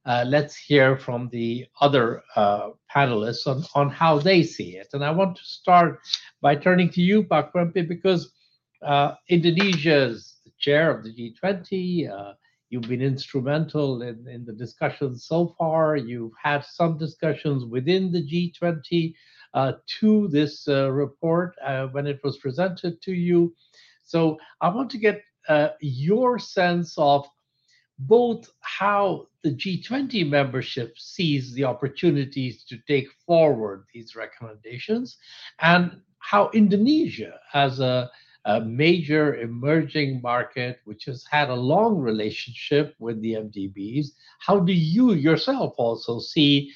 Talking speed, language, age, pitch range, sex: 140 wpm, English, 60-79, 130-175 Hz, male